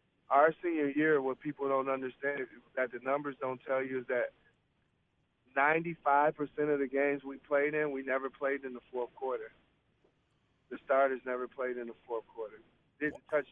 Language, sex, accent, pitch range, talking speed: English, male, American, 125-145 Hz, 180 wpm